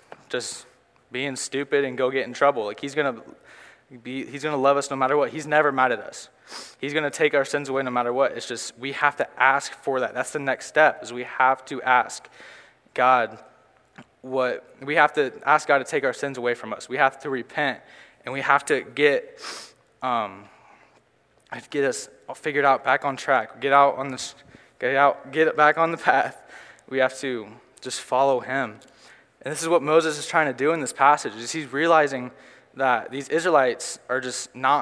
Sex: male